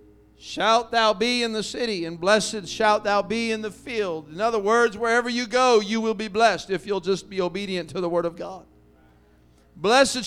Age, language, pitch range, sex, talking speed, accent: 50-69, English, 165-230 Hz, male, 205 wpm, American